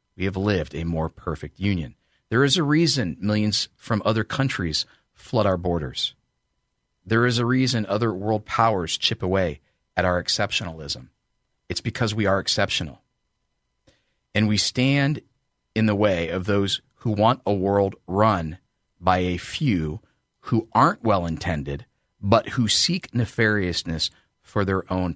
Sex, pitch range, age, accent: male, 80-110 Hz, 40-59, American